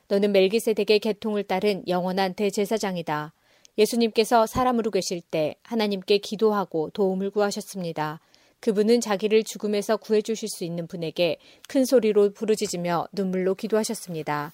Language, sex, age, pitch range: Korean, female, 30-49, 180-220 Hz